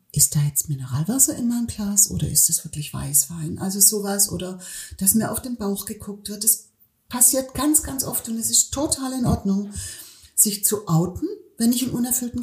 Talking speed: 195 wpm